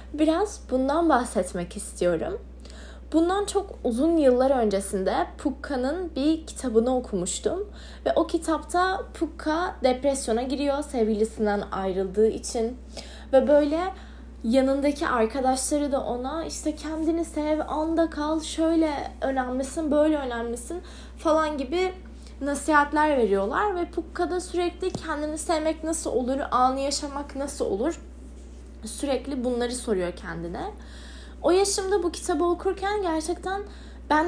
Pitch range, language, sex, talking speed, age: 245-315 Hz, Turkish, female, 110 wpm, 10-29